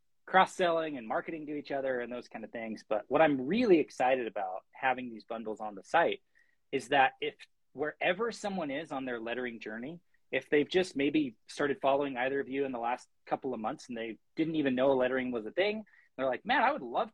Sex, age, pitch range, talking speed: male, 20-39, 120-175 Hz, 220 wpm